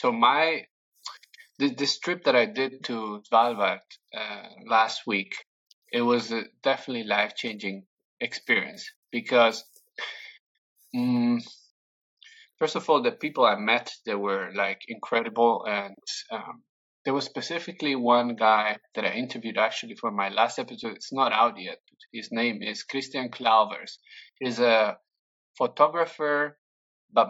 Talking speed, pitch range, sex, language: 135 wpm, 115-150 Hz, male, English